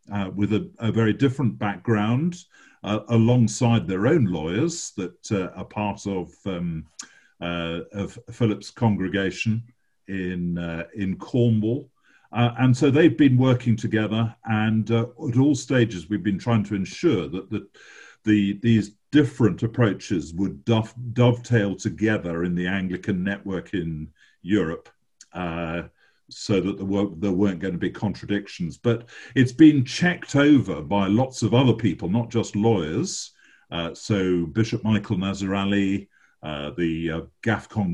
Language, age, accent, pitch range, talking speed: English, 50-69, British, 95-120 Hz, 140 wpm